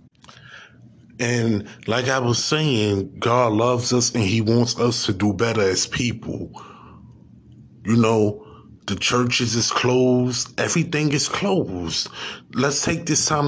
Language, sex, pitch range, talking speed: English, male, 110-135 Hz, 135 wpm